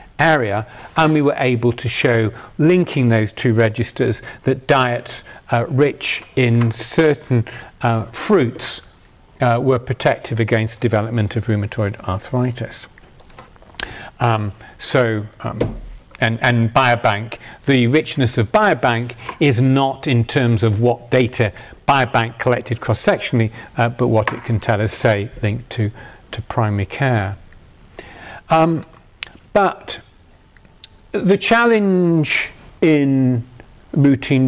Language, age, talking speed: English, 50-69, 115 wpm